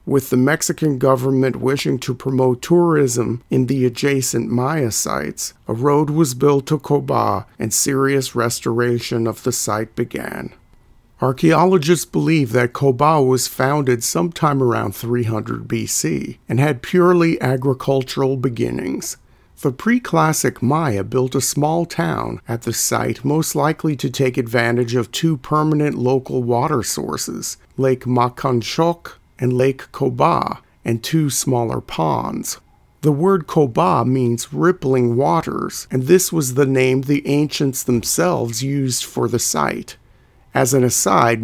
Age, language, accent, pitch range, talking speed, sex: 50-69, English, American, 120-140 Hz, 135 wpm, male